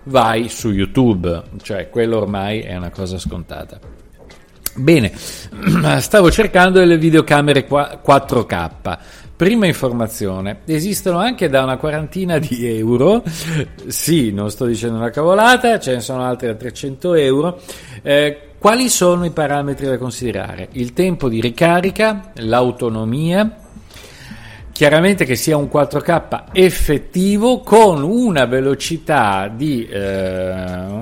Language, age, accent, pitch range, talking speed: Italian, 50-69, native, 110-160 Hz, 120 wpm